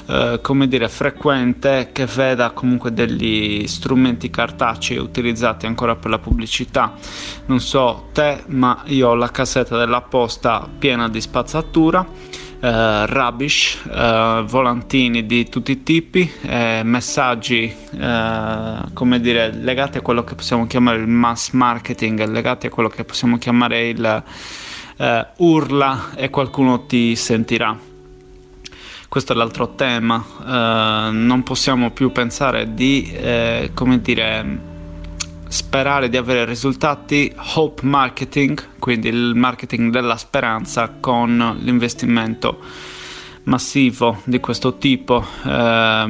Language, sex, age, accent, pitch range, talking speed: Italian, male, 20-39, native, 115-130 Hz, 120 wpm